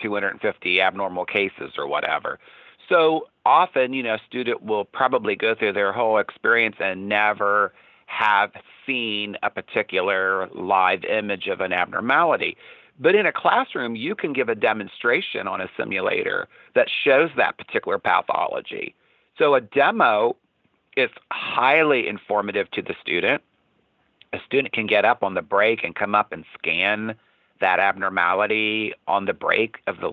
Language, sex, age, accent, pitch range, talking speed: English, male, 50-69, American, 105-170 Hz, 150 wpm